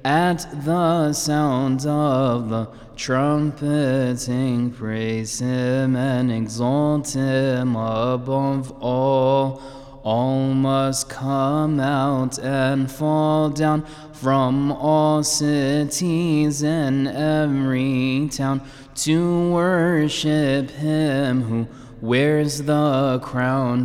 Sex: male